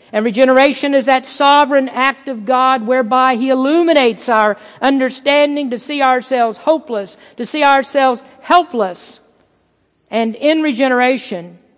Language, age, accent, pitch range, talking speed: English, 50-69, American, 205-265 Hz, 120 wpm